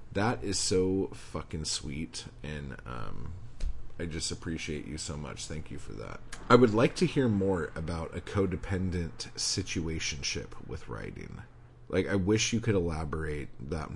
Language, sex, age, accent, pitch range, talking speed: English, male, 30-49, American, 80-100 Hz, 155 wpm